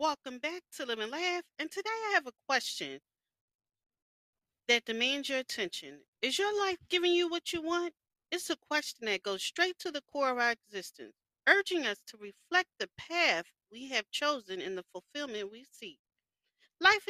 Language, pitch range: English, 225-330 Hz